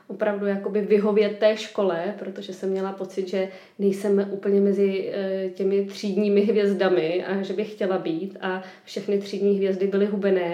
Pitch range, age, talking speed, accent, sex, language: 180-205 Hz, 20-39, 160 wpm, native, female, Czech